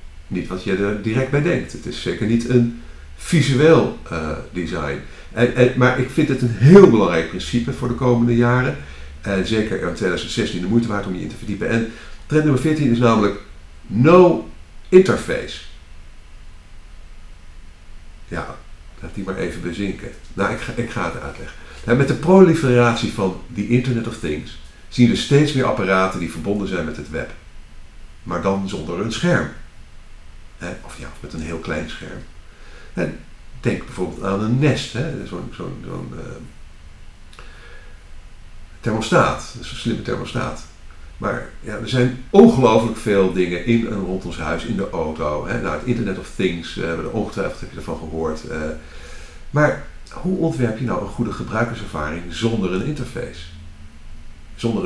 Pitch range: 80-120 Hz